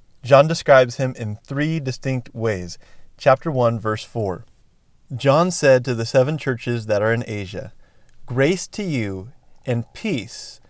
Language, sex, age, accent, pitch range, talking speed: English, male, 30-49, American, 115-140 Hz, 145 wpm